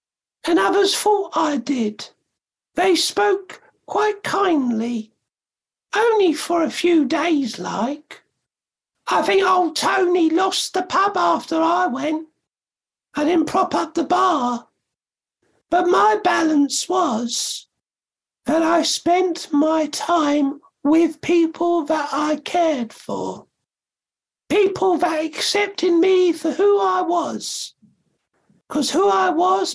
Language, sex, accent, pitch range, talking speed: English, male, British, 305-360 Hz, 115 wpm